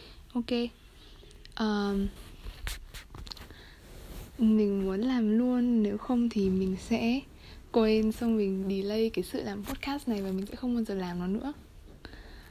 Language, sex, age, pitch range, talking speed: Vietnamese, female, 20-39, 200-260 Hz, 135 wpm